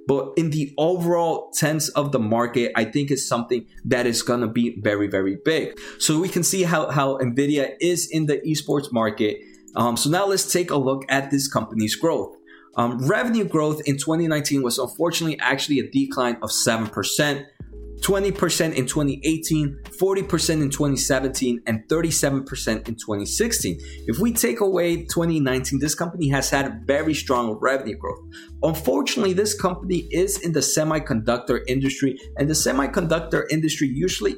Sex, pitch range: male, 125-160 Hz